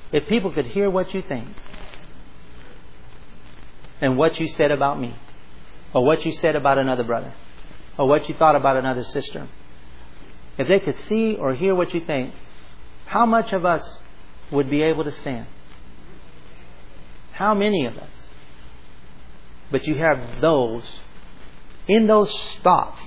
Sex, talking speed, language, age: male, 145 wpm, English, 40-59